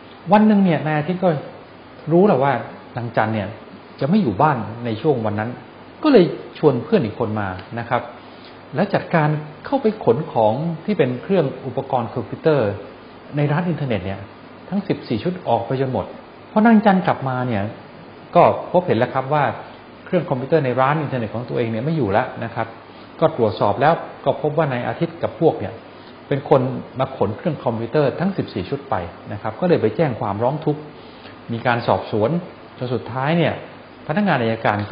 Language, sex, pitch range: English, male, 115-160 Hz